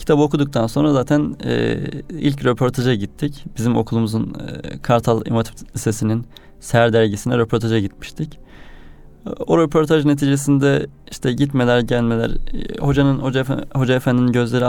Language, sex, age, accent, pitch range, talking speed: Turkish, male, 30-49, native, 110-135 Hz, 125 wpm